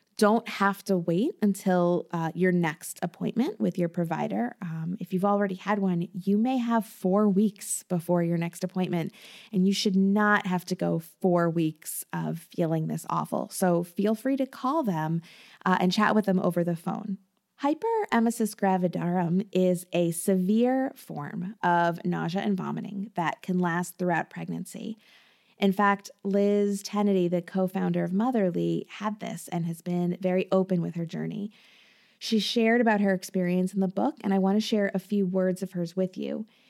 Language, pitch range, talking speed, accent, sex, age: English, 180-210 Hz, 175 wpm, American, female, 20-39